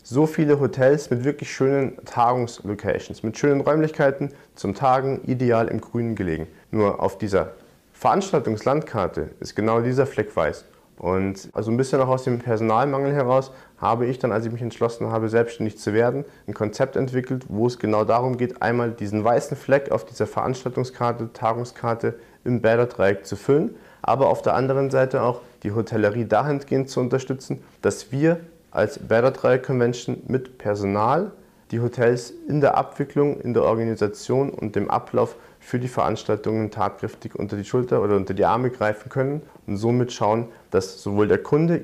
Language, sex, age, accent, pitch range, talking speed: German, male, 40-59, German, 110-135 Hz, 165 wpm